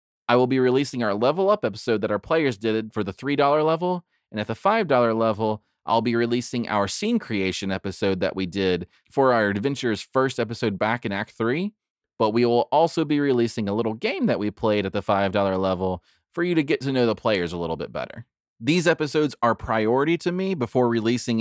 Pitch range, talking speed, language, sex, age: 110-145 Hz, 215 wpm, English, male, 30-49